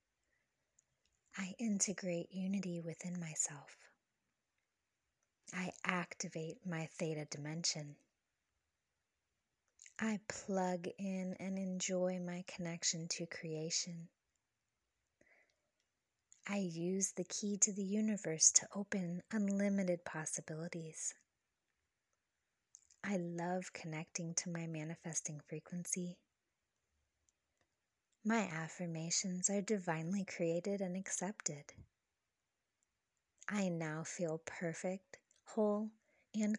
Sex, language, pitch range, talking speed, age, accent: female, English, 160-195 Hz, 80 wpm, 20-39, American